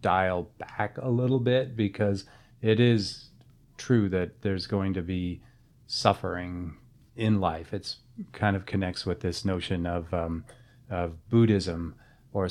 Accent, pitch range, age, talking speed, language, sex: American, 90-110 Hz, 30-49, 140 wpm, English, male